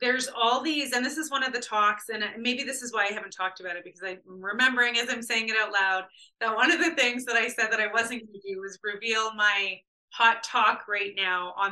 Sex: female